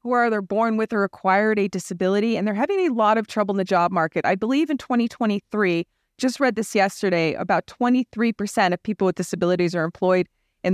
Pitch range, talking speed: 180-225 Hz, 205 wpm